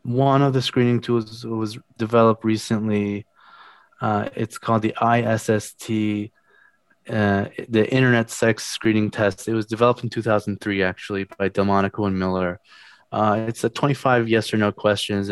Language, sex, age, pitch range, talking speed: English, male, 20-39, 100-115 Hz, 155 wpm